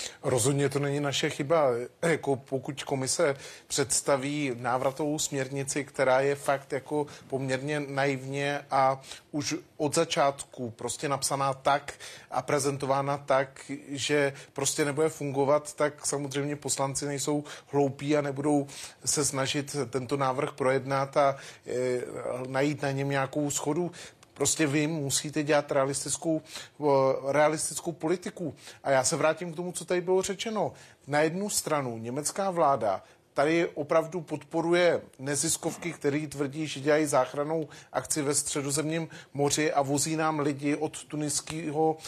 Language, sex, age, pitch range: Czech, male, 30-49, 140-155 Hz